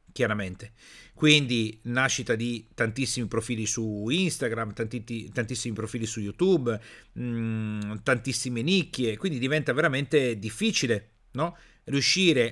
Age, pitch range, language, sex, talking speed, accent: 50-69, 115-170 Hz, Italian, male, 105 wpm, native